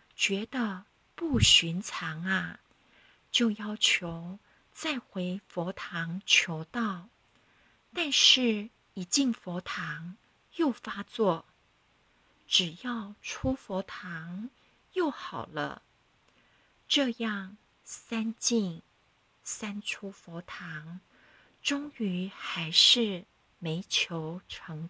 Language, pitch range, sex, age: Chinese, 175-235 Hz, female, 50-69